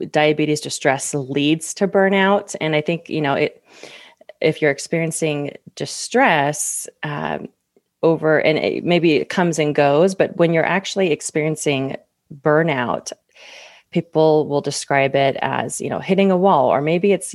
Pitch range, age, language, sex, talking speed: 145-175 Hz, 30-49, English, female, 150 wpm